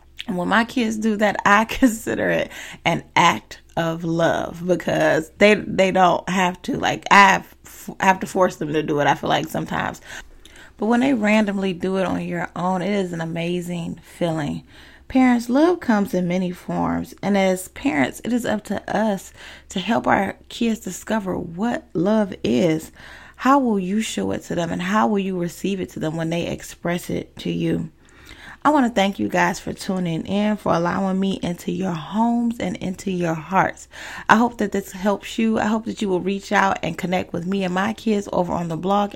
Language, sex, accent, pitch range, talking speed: English, female, American, 175-215 Hz, 205 wpm